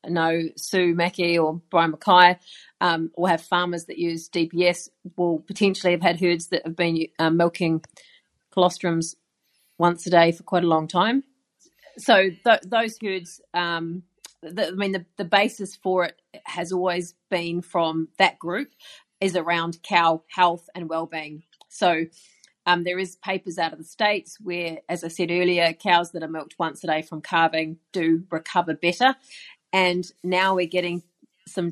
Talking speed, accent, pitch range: 165 wpm, Australian, 170-190 Hz